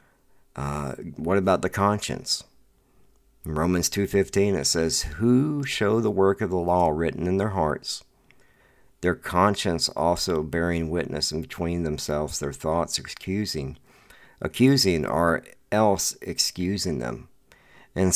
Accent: American